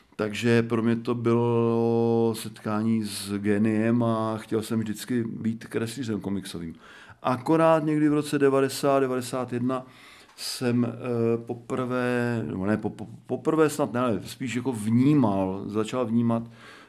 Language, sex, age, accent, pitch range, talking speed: Czech, male, 50-69, native, 105-120 Hz, 115 wpm